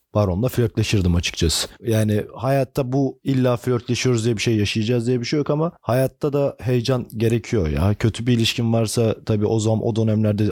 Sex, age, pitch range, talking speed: male, 40-59, 105-150 Hz, 175 wpm